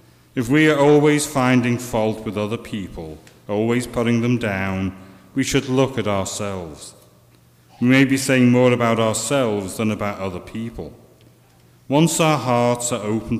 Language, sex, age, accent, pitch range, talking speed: English, male, 40-59, British, 100-125 Hz, 150 wpm